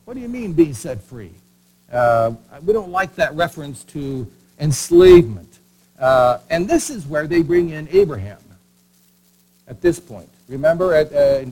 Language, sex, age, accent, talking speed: German, male, 60-79, American, 160 wpm